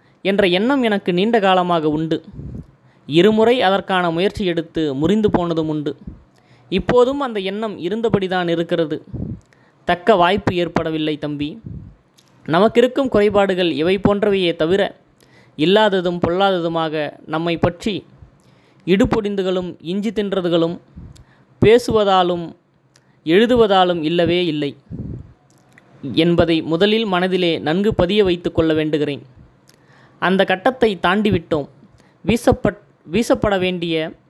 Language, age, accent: Tamil, 20-39, native